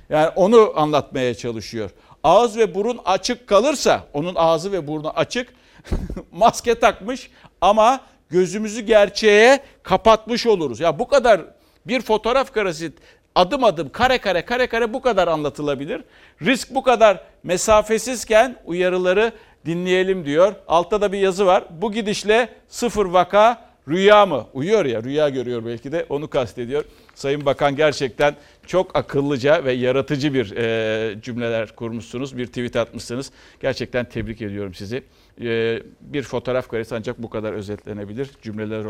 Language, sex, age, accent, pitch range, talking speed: Turkish, male, 60-79, native, 120-205 Hz, 135 wpm